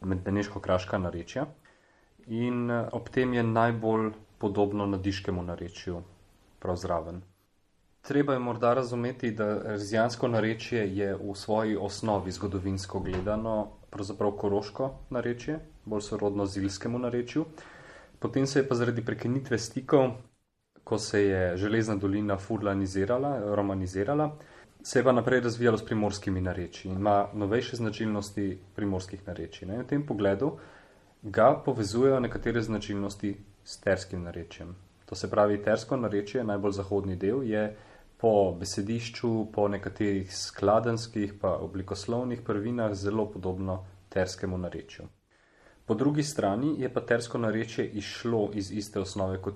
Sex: male